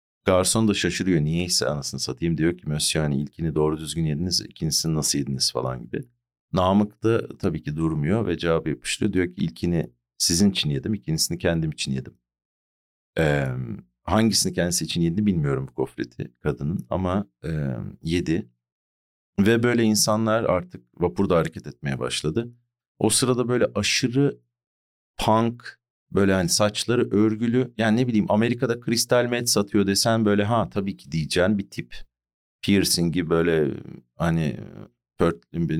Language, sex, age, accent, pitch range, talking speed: Turkish, male, 50-69, native, 70-110 Hz, 135 wpm